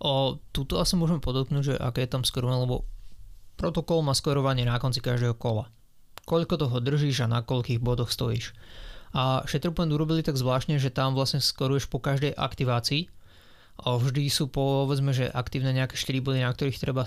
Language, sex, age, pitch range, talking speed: Slovak, male, 20-39, 125-150 Hz, 170 wpm